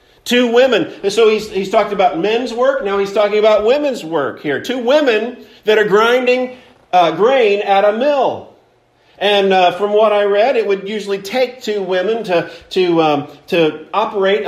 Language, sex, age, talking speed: English, male, 50-69, 180 wpm